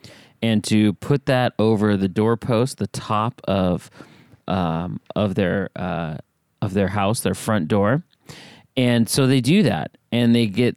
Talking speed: 155 wpm